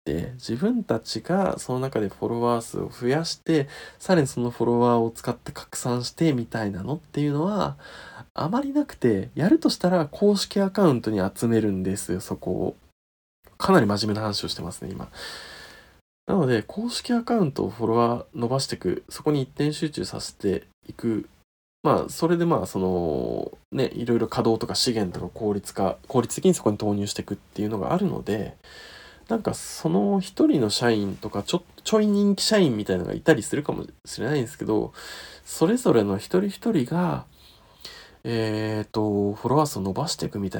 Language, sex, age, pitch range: Japanese, male, 20-39, 105-175 Hz